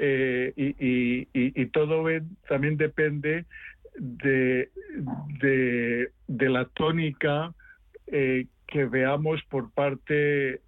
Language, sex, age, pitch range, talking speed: Spanish, male, 50-69, 130-150 Hz, 95 wpm